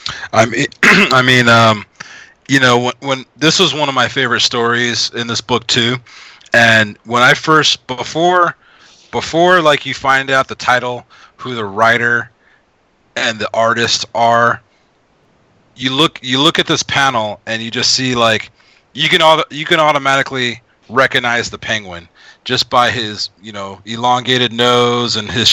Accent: American